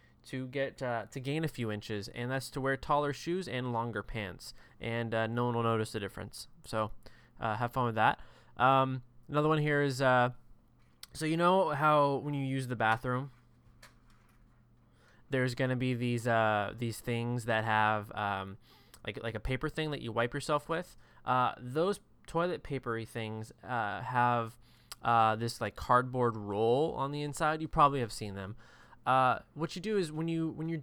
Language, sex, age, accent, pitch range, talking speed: English, male, 20-39, American, 115-145 Hz, 185 wpm